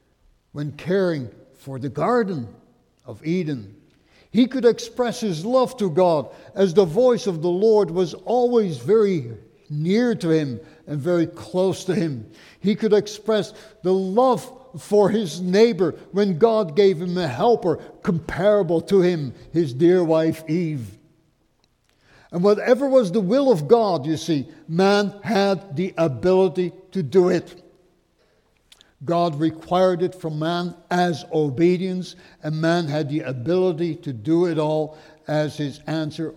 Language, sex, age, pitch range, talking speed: English, male, 60-79, 150-200 Hz, 145 wpm